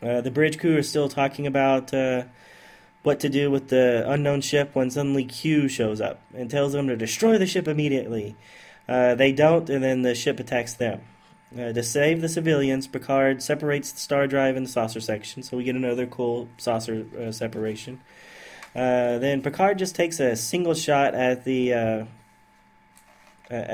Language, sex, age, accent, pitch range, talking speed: English, male, 20-39, American, 115-140 Hz, 180 wpm